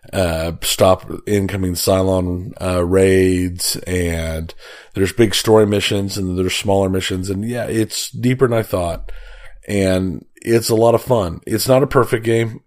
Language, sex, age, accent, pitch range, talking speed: English, male, 30-49, American, 95-110 Hz, 155 wpm